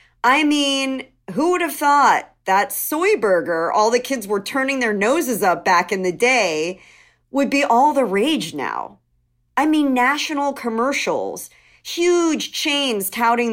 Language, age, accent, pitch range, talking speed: English, 40-59, American, 190-280 Hz, 150 wpm